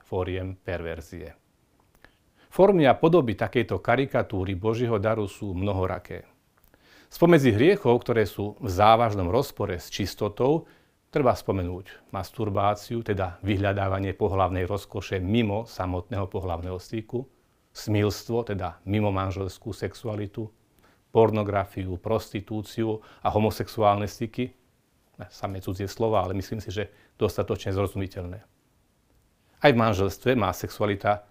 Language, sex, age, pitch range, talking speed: Slovak, male, 40-59, 95-115 Hz, 105 wpm